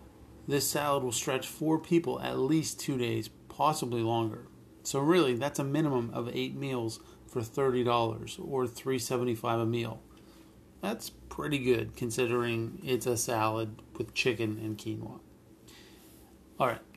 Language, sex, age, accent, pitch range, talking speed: English, male, 40-59, American, 115-135 Hz, 140 wpm